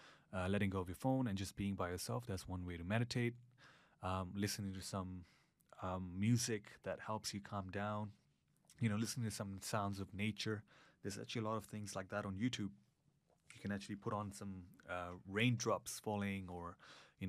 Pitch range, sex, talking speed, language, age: 95-115 Hz, male, 195 wpm, English, 30-49